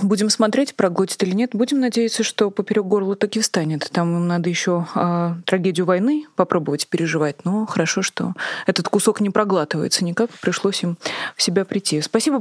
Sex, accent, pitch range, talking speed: female, native, 180-210 Hz, 170 wpm